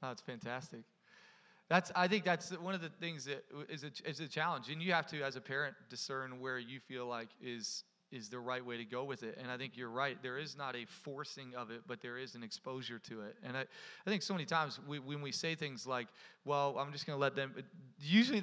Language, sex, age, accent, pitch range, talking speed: English, male, 30-49, American, 135-185 Hz, 255 wpm